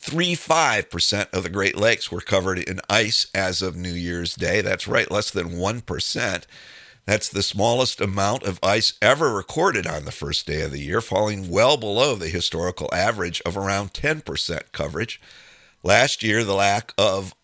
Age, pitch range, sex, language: 50-69, 95-125 Hz, male, English